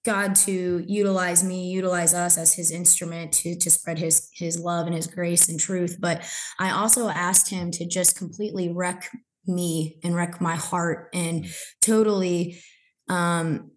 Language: English